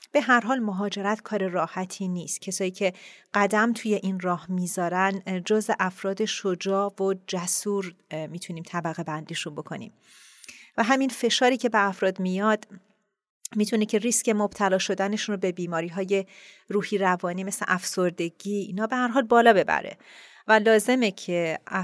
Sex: female